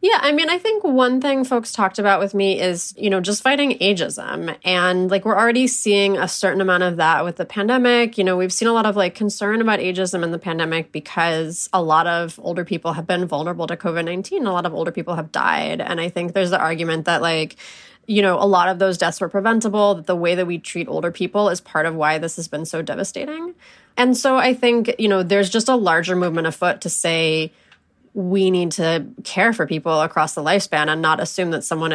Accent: American